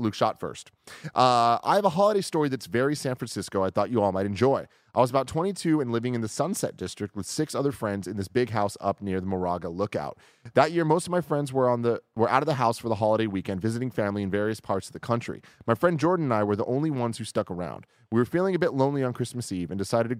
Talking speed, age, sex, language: 265 wpm, 30-49, male, English